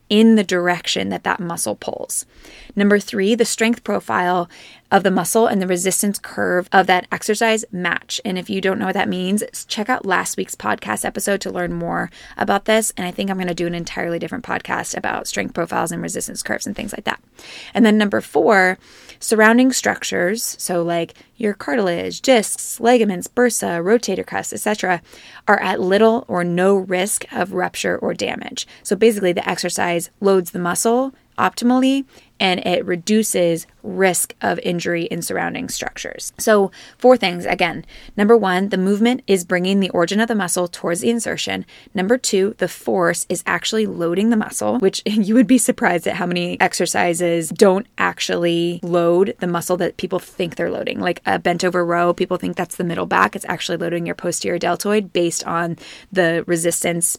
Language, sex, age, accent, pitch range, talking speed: English, female, 20-39, American, 175-215 Hz, 180 wpm